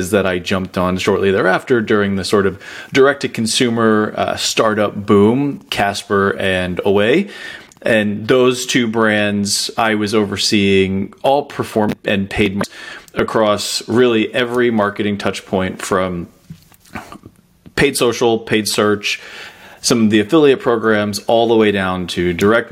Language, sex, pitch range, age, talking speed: English, male, 100-115 Hz, 30-49, 130 wpm